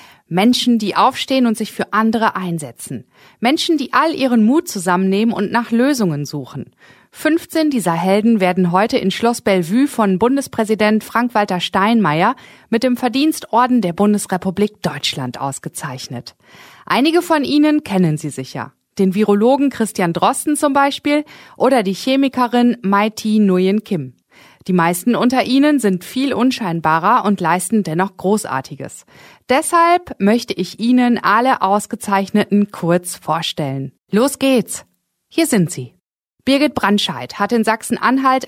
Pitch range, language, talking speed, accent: 185-250 Hz, German, 130 wpm, German